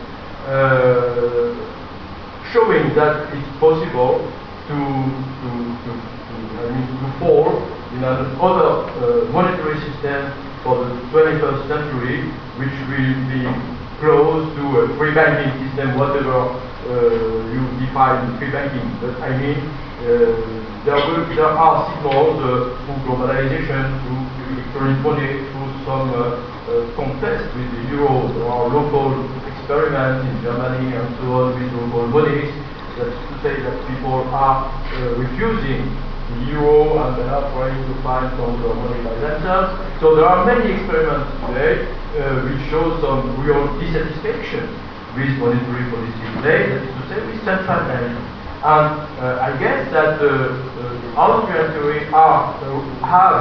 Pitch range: 125-150 Hz